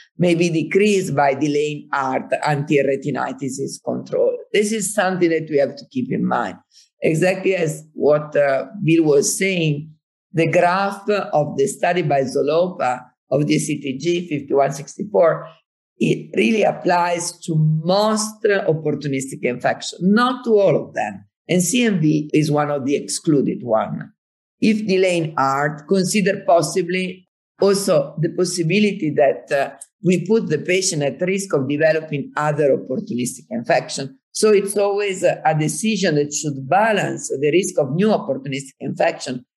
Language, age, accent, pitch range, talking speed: English, 50-69, Italian, 145-195 Hz, 140 wpm